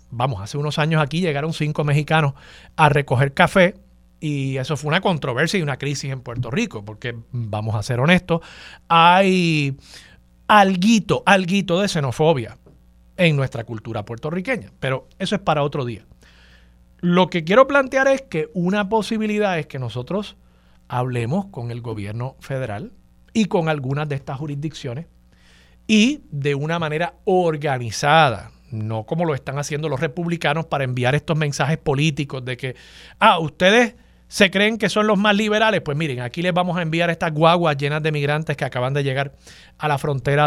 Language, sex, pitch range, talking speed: Spanish, male, 130-180 Hz, 165 wpm